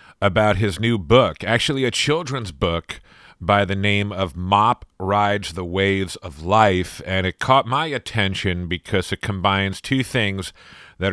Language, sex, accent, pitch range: English, male, American, 90-115 Hz